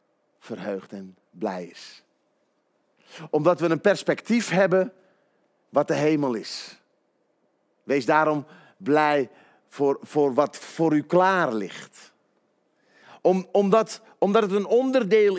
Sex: male